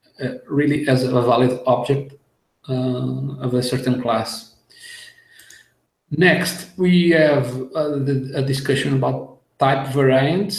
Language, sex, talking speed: English, male, 115 wpm